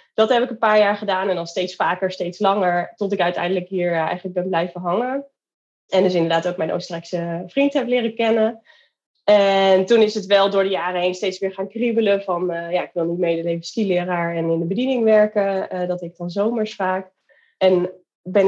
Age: 20-39